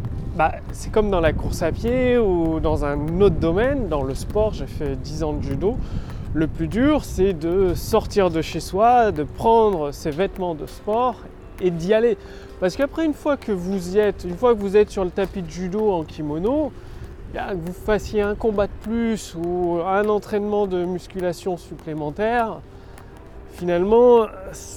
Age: 30-49